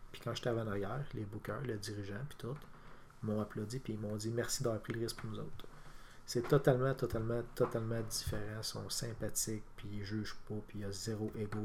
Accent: Canadian